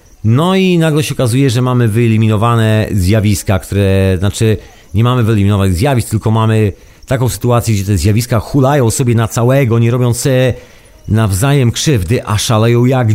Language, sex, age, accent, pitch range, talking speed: Polish, male, 40-59, native, 100-120 Hz, 155 wpm